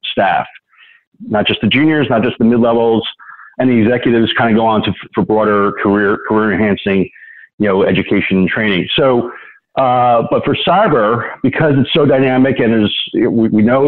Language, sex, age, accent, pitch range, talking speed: English, male, 50-69, American, 105-135 Hz, 180 wpm